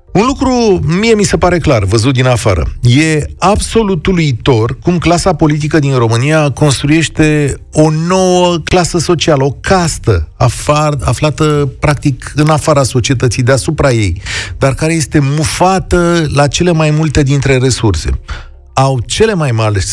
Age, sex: 40-59, male